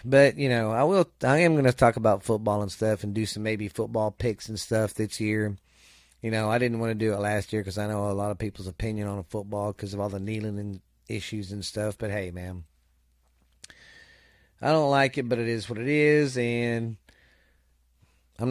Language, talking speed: English, 215 wpm